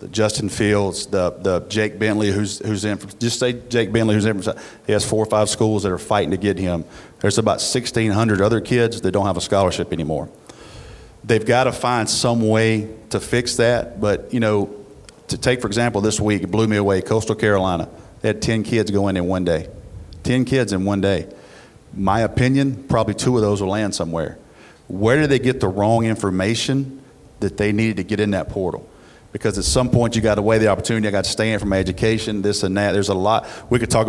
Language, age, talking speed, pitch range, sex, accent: English, 40-59, 220 wpm, 100-115 Hz, male, American